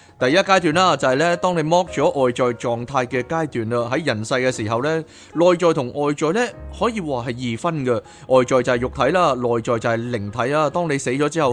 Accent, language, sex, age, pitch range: native, Chinese, male, 30-49, 115-160 Hz